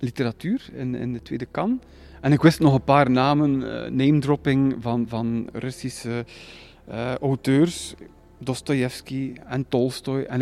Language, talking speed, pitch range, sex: Dutch, 140 wpm, 125-165 Hz, male